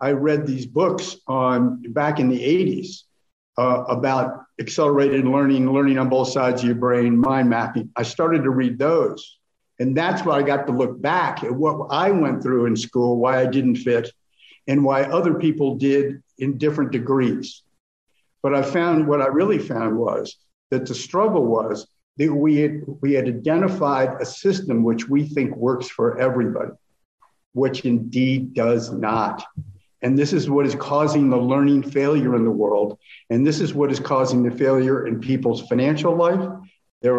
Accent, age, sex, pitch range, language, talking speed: American, 60-79, male, 125-150 Hz, English, 175 wpm